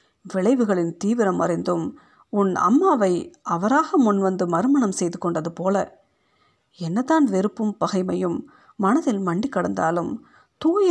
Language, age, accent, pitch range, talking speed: Tamil, 50-69, native, 180-230 Hz, 100 wpm